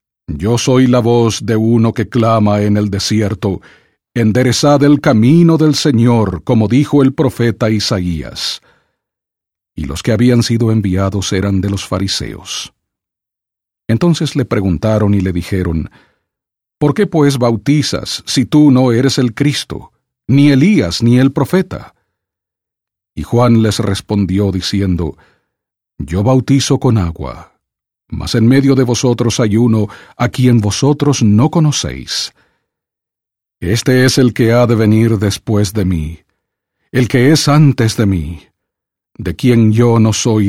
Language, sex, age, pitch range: English, male, 50-69, 95-125 Hz